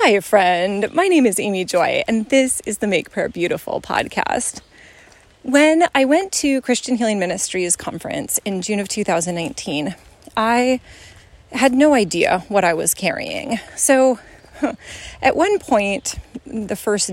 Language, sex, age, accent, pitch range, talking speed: English, female, 30-49, American, 185-245 Hz, 145 wpm